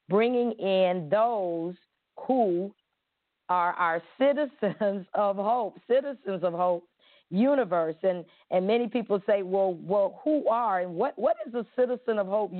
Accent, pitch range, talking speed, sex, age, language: American, 180-230 Hz, 145 wpm, female, 40-59, English